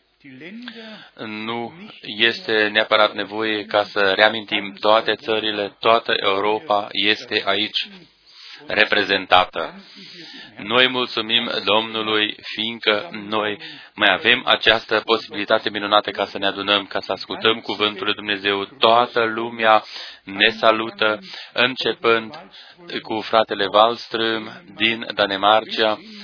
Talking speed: 100 wpm